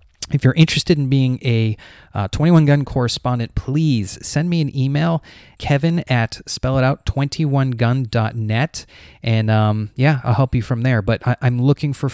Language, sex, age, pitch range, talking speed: English, male, 30-49, 105-130 Hz, 165 wpm